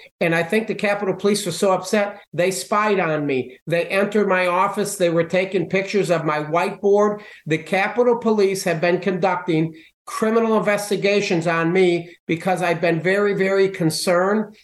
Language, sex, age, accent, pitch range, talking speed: English, male, 50-69, American, 175-205 Hz, 165 wpm